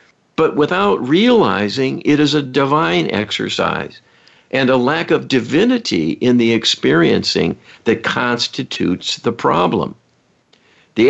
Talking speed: 115 wpm